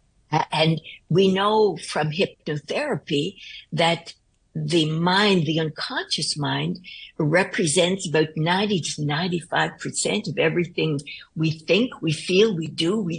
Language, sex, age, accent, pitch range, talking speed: English, female, 60-79, American, 155-200 Hz, 115 wpm